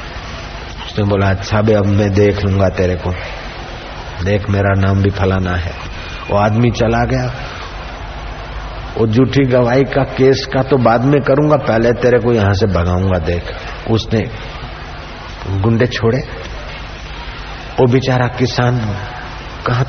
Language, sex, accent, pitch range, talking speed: Hindi, male, native, 105-140 Hz, 135 wpm